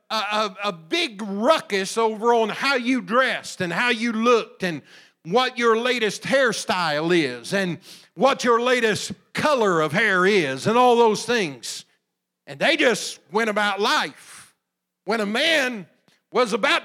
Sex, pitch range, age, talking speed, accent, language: male, 220-325 Hz, 50-69, 150 wpm, American, English